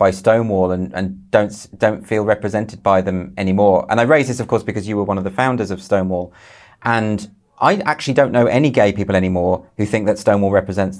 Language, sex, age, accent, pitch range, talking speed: English, male, 30-49, British, 100-130 Hz, 220 wpm